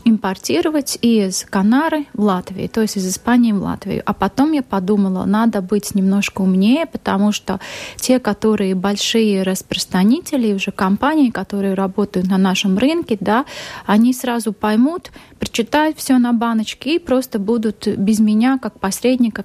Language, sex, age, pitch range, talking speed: Russian, female, 20-39, 200-245 Hz, 145 wpm